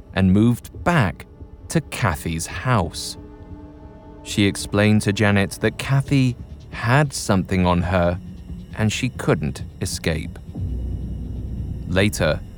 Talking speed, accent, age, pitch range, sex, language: 100 wpm, British, 20-39, 90-120 Hz, male, English